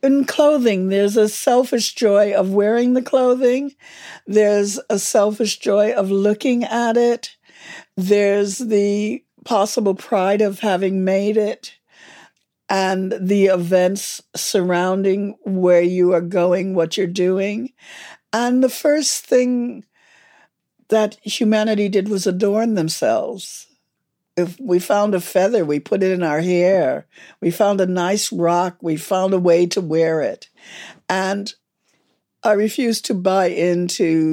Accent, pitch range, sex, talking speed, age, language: American, 175-220 Hz, female, 135 wpm, 60-79, English